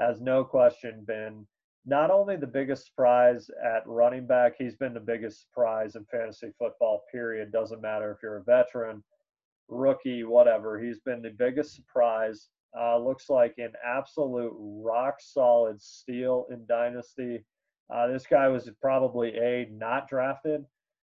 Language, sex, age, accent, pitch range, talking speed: English, male, 30-49, American, 115-135 Hz, 145 wpm